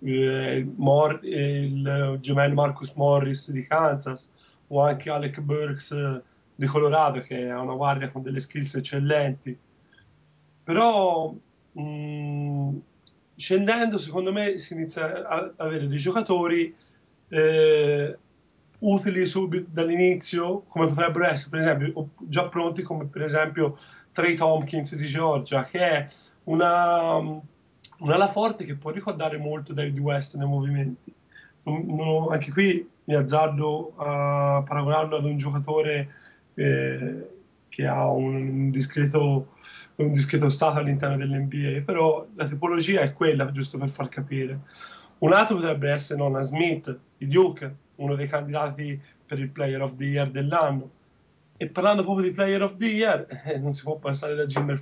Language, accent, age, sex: Italian, native, 30-49, male